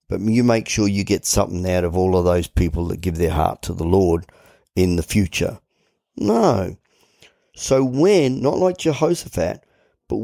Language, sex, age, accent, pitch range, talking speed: English, male, 50-69, Australian, 90-110 Hz, 175 wpm